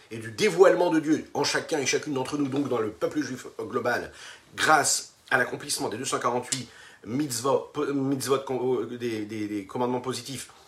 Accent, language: French, French